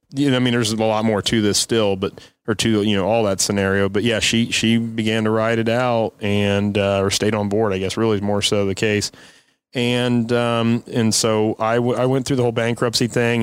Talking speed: 240 wpm